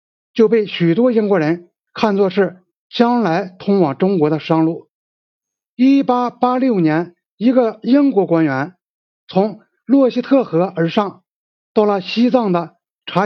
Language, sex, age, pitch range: Chinese, male, 60-79, 170-230 Hz